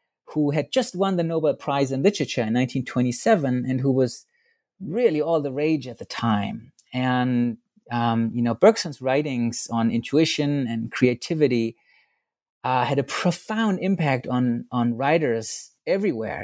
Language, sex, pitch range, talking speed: English, male, 115-150 Hz, 145 wpm